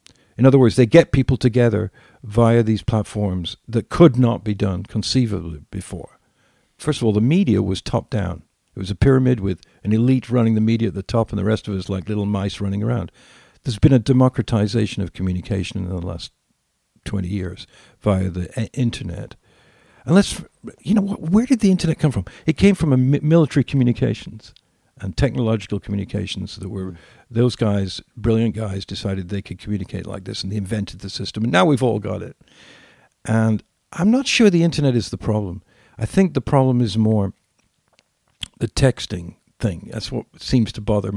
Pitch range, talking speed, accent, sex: 100-125 Hz, 190 wpm, American, male